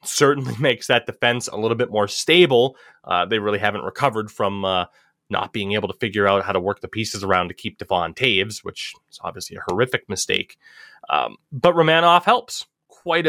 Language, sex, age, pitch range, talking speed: English, male, 20-39, 105-155 Hz, 195 wpm